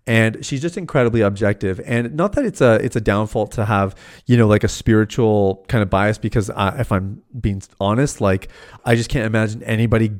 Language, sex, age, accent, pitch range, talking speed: English, male, 30-49, American, 105-125 Hz, 205 wpm